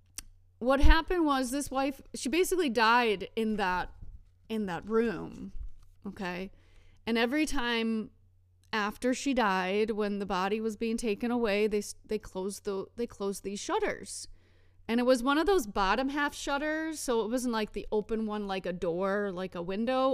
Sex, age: female, 30-49